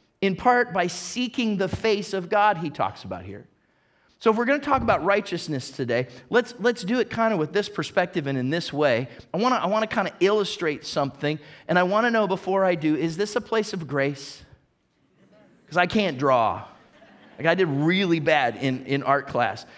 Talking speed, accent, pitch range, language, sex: 195 wpm, American, 150-210 Hz, English, male